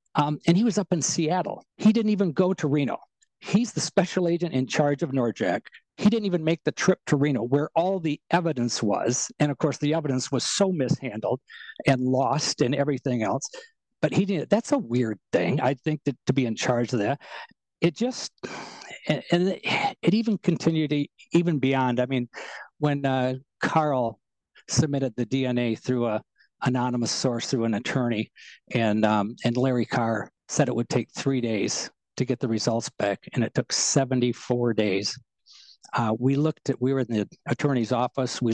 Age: 60-79